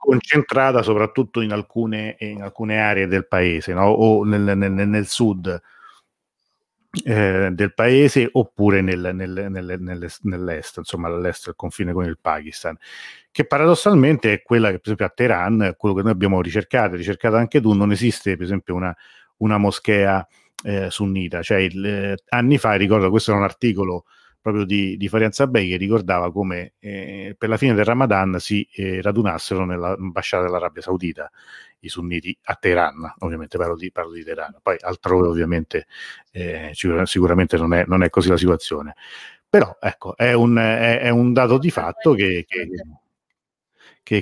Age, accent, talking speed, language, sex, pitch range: 40-59, native, 165 wpm, Italian, male, 90-110 Hz